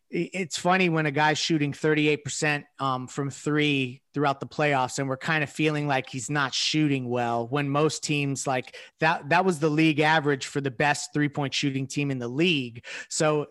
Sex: male